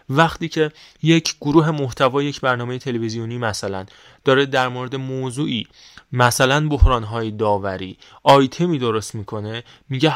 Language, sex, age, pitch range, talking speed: Persian, male, 20-39, 115-140 Hz, 120 wpm